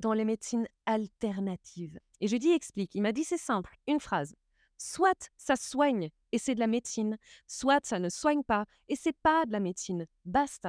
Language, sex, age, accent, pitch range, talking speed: French, female, 20-39, French, 200-280 Hz, 195 wpm